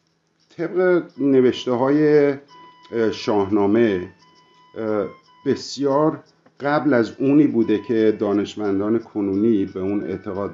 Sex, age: male, 50-69